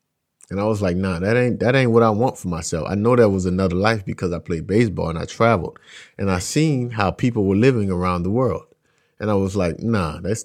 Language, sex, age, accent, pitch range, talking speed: English, male, 30-49, American, 95-125 Hz, 245 wpm